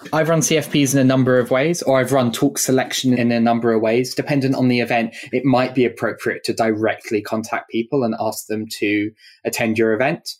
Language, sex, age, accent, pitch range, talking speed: English, male, 20-39, British, 115-135 Hz, 215 wpm